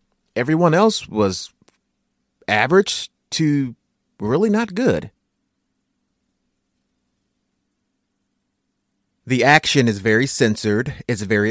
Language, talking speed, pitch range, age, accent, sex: English, 80 wpm, 95-140 Hz, 30-49, American, male